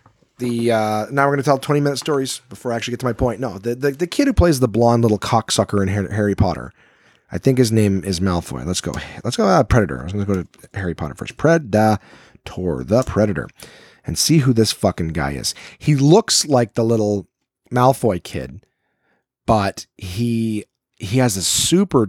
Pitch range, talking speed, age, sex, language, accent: 95-130 Hz, 205 wpm, 40-59, male, English, American